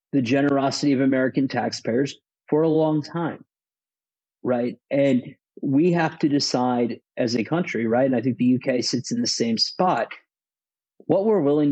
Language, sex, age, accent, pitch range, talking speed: English, male, 40-59, American, 120-155 Hz, 165 wpm